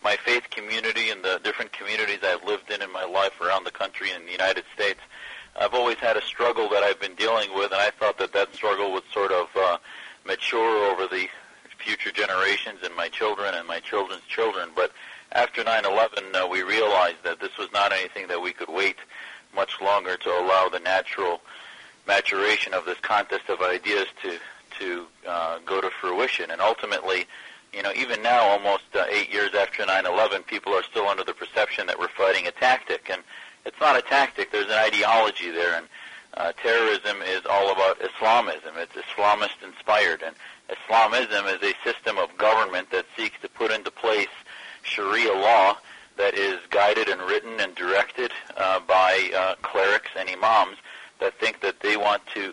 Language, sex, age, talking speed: English, male, 40-59, 185 wpm